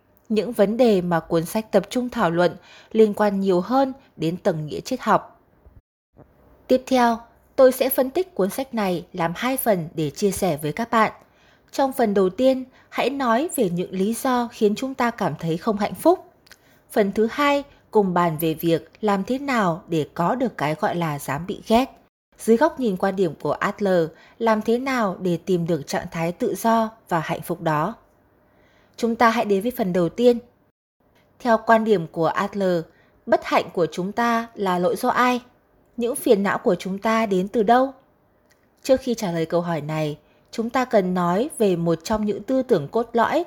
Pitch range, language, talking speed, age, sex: 175-240 Hz, Vietnamese, 200 wpm, 20-39, female